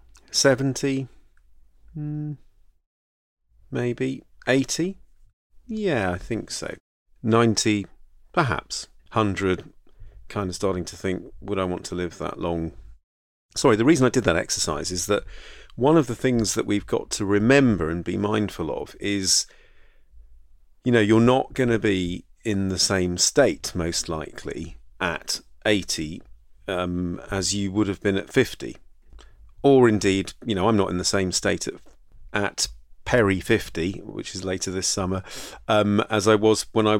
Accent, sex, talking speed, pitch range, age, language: British, male, 150 wpm, 90-120 Hz, 40-59, English